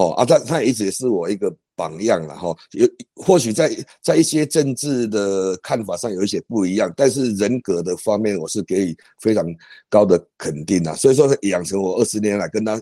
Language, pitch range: Chinese, 100-125 Hz